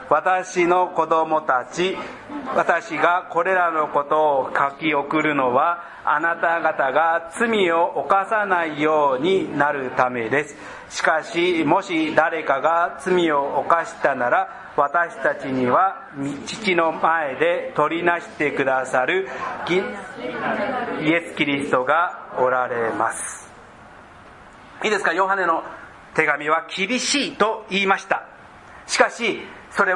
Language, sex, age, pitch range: Japanese, male, 40-59, 155-210 Hz